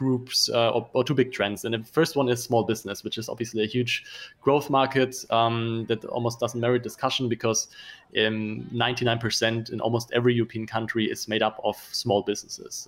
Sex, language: male, English